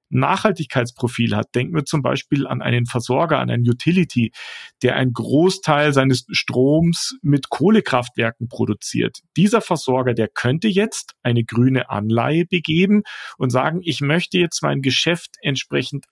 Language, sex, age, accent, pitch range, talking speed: German, male, 40-59, German, 125-160 Hz, 140 wpm